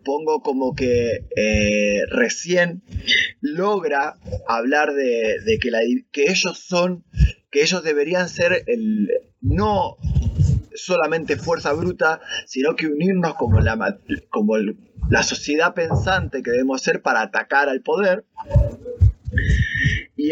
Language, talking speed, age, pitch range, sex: Spanish, 120 wpm, 30-49, 135-205 Hz, male